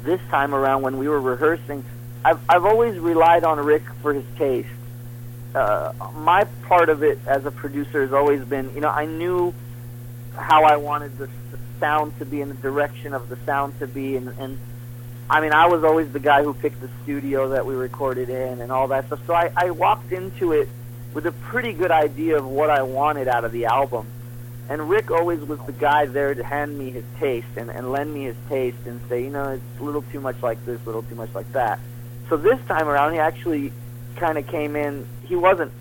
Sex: male